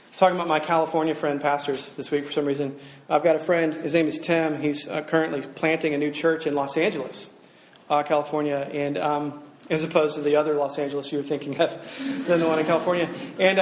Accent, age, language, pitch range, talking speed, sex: American, 30-49, English, 145-170 Hz, 220 wpm, male